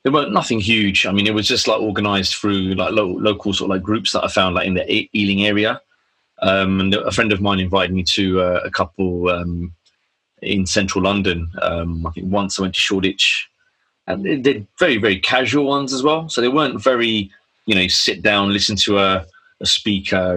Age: 30-49